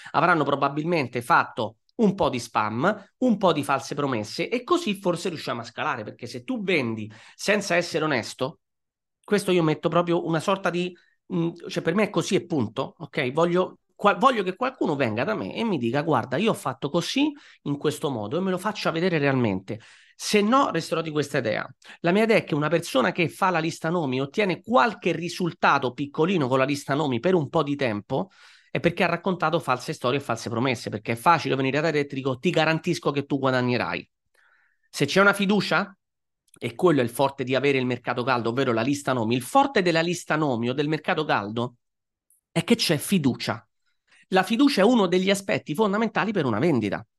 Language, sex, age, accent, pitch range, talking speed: Italian, male, 30-49, native, 135-185 Hz, 200 wpm